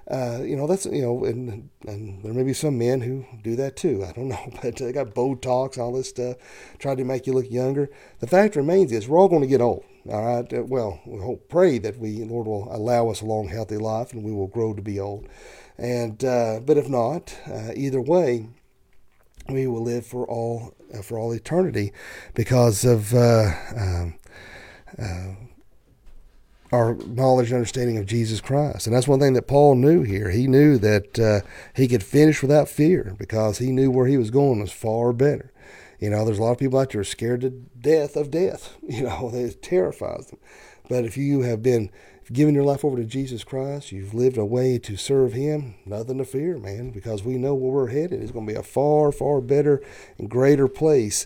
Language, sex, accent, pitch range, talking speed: English, male, American, 110-135 Hz, 210 wpm